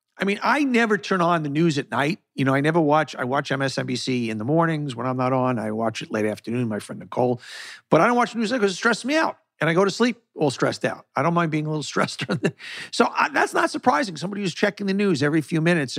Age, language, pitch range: 50-69, English, 135-195 Hz